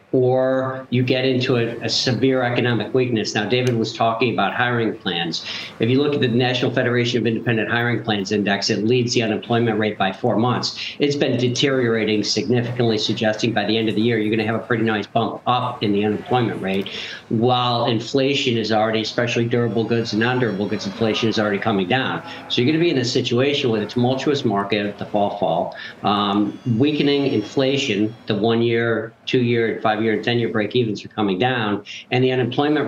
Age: 50-69